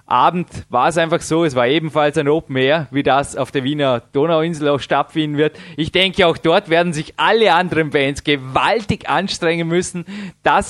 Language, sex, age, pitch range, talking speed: German, male, 20-39, 145-175 Hz, 185 wpm